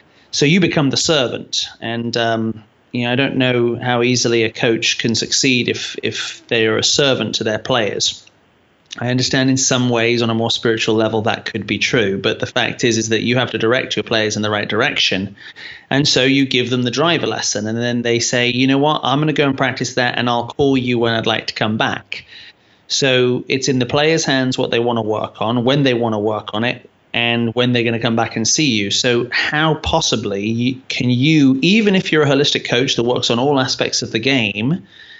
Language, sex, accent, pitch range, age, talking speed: English, male, British, 115-135 Hz, 30-49, 235 wpm